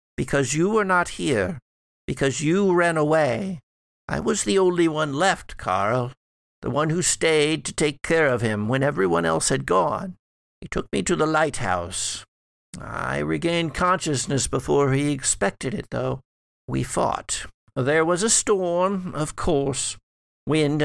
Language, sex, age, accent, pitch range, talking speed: English, male, 60-79, American, 115-155 Hz, 155 wpm